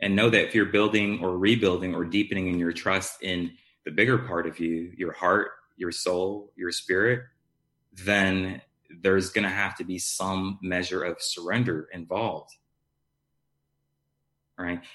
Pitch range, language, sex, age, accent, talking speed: 90-105 Hz, English, male, 30-49, American, 155 wpm